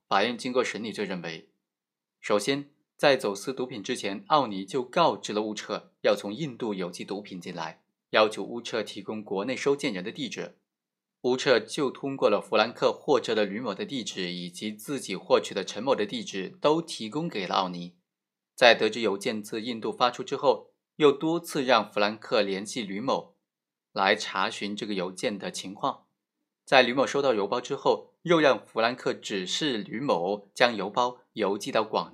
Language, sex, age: Chinese, male, 20-39